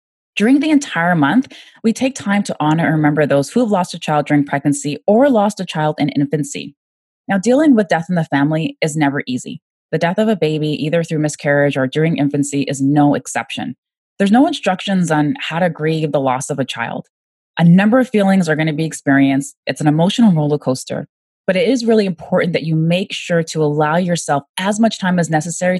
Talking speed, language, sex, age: 215 wpm, English, female, 20-39